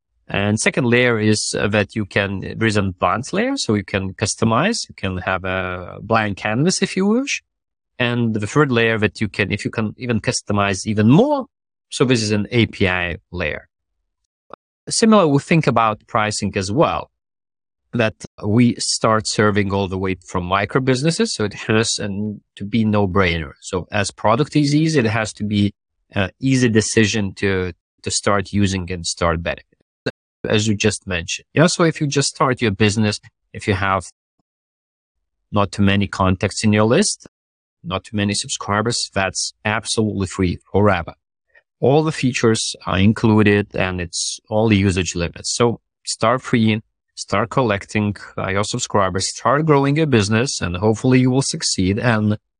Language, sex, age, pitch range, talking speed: English, male, 30-49, 95-125 Hz, 165 wpm